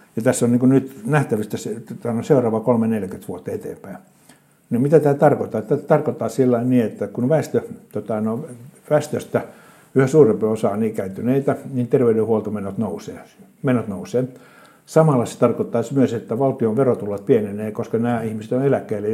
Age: 60-79